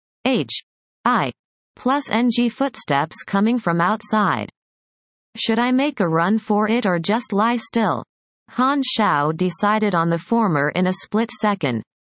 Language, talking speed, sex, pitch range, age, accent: English, 140 wpm, female, 170-230 Hz, 30-49, American